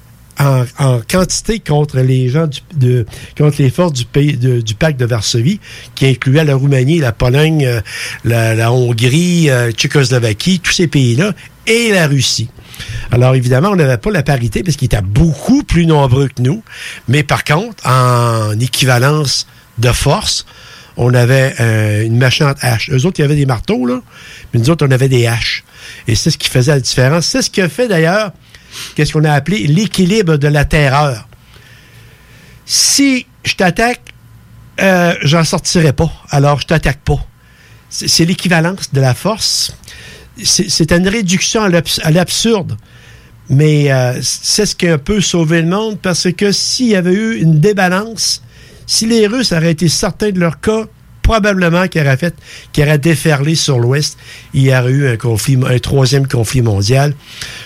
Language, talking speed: French, 170 wpm